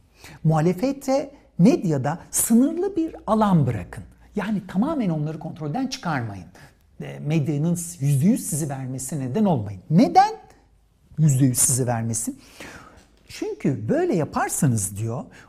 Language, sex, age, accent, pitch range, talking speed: Turkish, male, 60-79, native, 150-225 Hz, 95 wpm